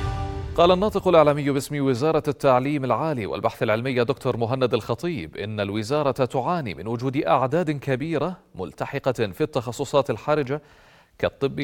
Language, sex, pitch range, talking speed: Arabic, male, 110-145 Hz, 125 wpm